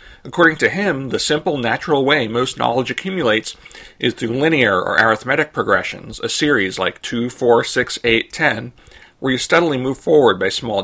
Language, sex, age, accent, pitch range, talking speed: English, male, 40-59, American, 115-145 Hz, 170 wpm